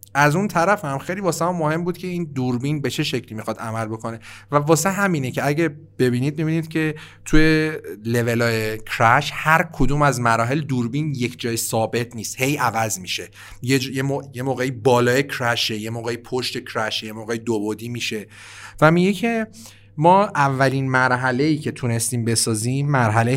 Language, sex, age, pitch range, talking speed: Persian, male, 40-59, 115-160 Hz, 175 wpm